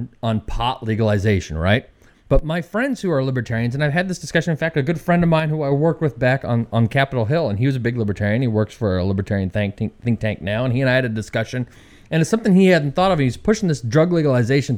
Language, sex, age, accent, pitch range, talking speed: English, male, 30-49, American, 120-170 Hz, 265 wpm